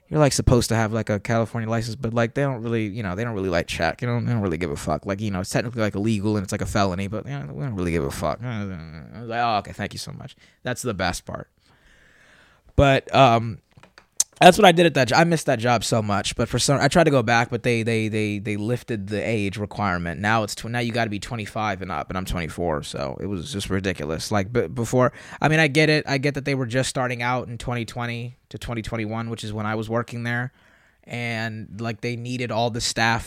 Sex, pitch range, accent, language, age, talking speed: male, 100-125 Hz, American, English, 20-39, 265 wpm